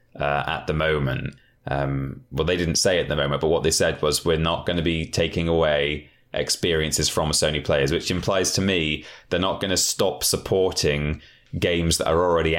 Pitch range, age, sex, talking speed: 75-100 Hz, 20-39, male, 205 wpm